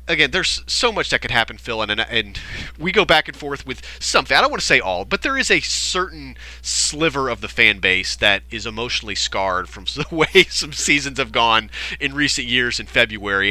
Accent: American